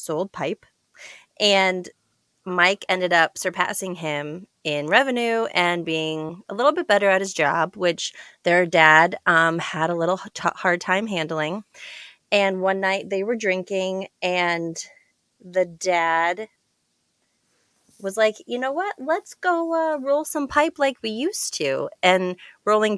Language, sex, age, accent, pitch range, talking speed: English, female, 20-39, American, 160-220 Hz, 145 wpm